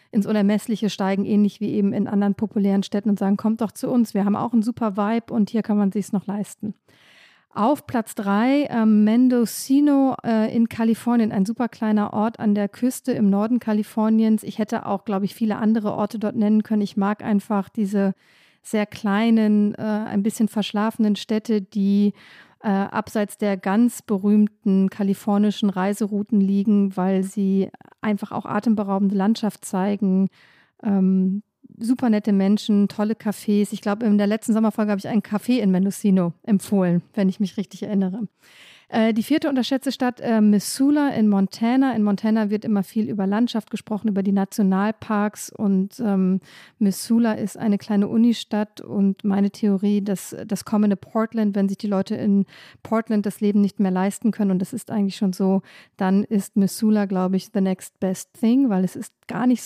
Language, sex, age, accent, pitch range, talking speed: German, female, 50-69, German, 200-220 Hz, 175 wpm